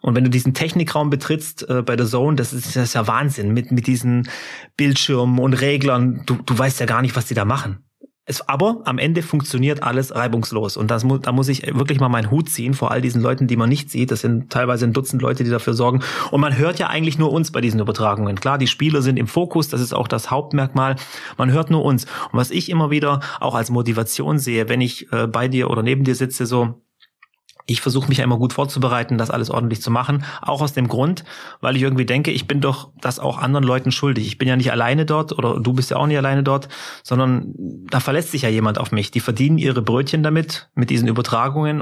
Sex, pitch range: male, 120-140 Hz